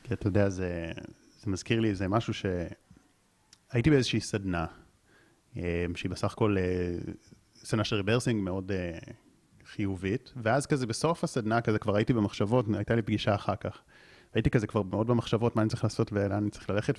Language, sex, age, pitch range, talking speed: Hebrew, male, 30-49, 100-120 Hz, 165 wpm